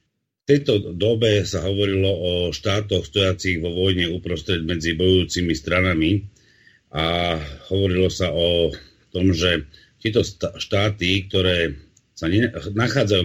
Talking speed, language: 120 wpm, Slovak